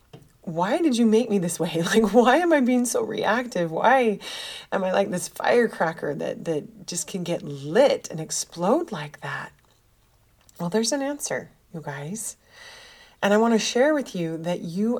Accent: American